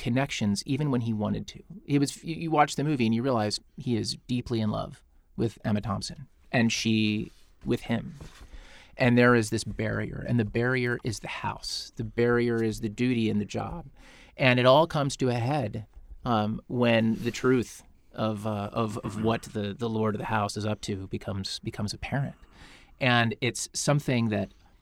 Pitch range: 105-130 Hz